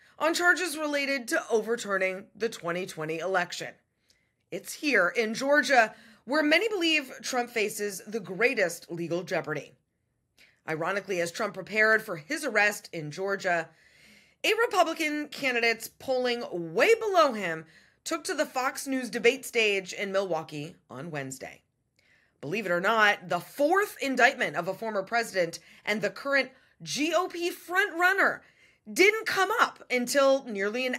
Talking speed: 135 wpm